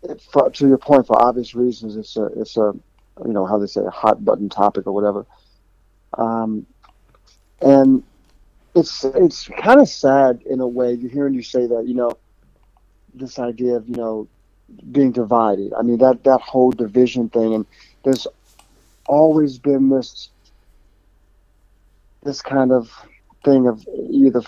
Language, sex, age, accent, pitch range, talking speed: English, male, 40-59, American, 105-135 Hz, 160 wpm